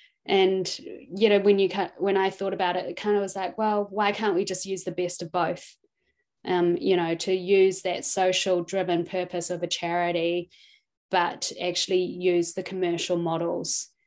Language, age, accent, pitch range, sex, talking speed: English, 20-39, Australian, 175-210 Hz, female, 185 wpm